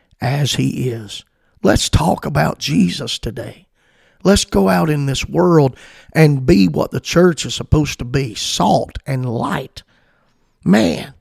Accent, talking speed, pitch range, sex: American, 145 wpm, 125-155 Hz, male